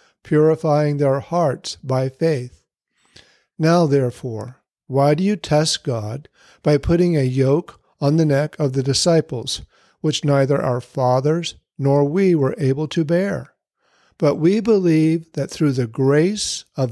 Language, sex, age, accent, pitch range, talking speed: English, male, 50-69, American, 135-165 Hz, 140 wpm